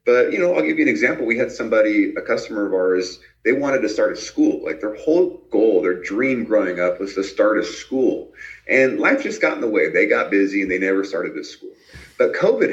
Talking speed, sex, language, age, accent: 245 wpm, male, English, 30-49, American